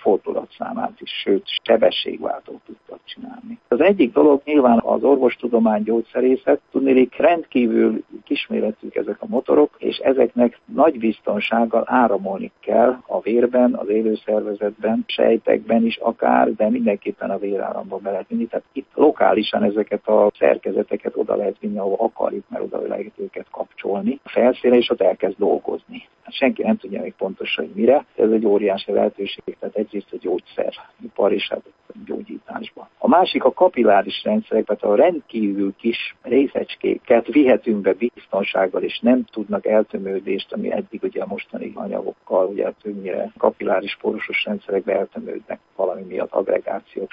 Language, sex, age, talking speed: Hungarian, male, 50-69, 140 wpm